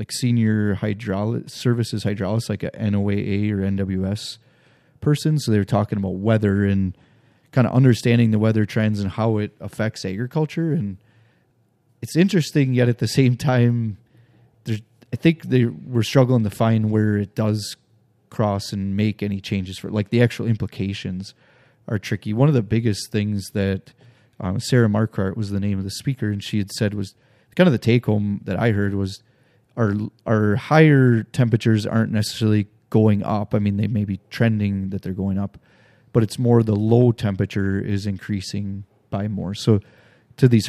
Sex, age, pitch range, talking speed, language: male, 30-49, 100-120 Hz, 175 wpm, English